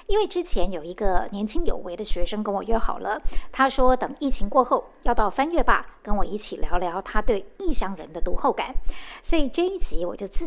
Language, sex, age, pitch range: Chinese, male, 50-69, 200-270 Hz